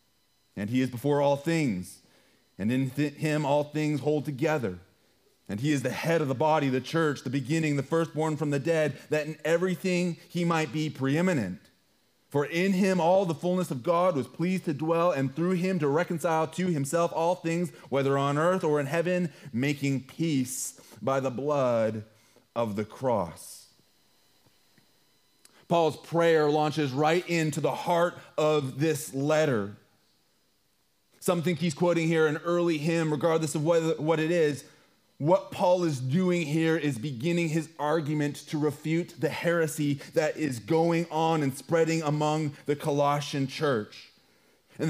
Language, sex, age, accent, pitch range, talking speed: English, male, 30-49, American, 145-170 Hz, 160 wpm